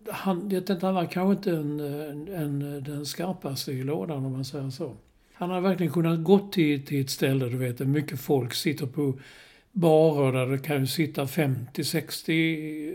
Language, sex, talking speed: Swedish, male, 195 wpm